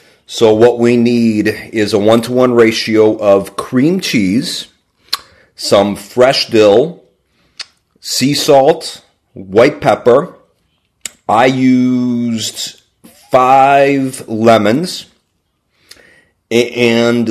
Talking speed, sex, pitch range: 80 wpm, male, 105-130 Hz